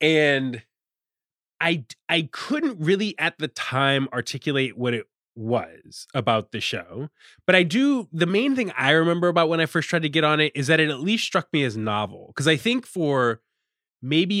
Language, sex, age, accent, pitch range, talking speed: English, male, 20-39, American, 115-165 Hz, 190 wpm